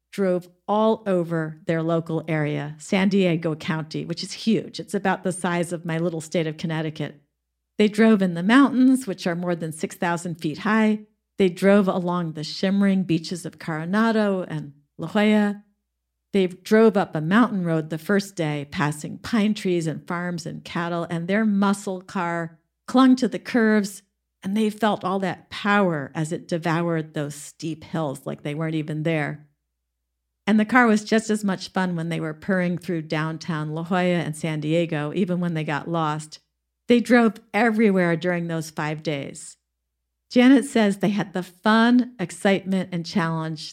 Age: 50-69